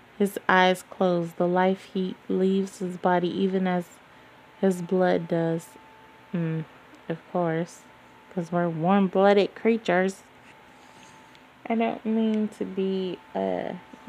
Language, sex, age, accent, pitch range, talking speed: English, female, 20-39, American, 160-210 Hz, 115 wpm